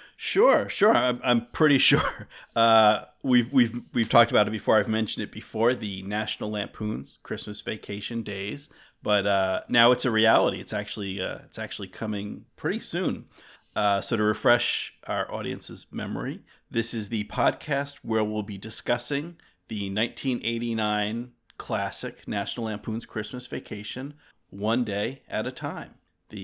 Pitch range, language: 105-125 Hz, English